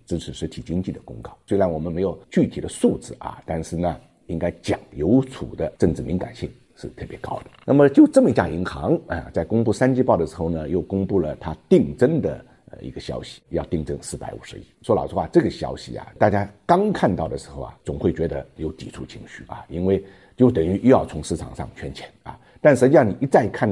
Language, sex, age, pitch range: Chinese, male, 50-69, 85-125 Hz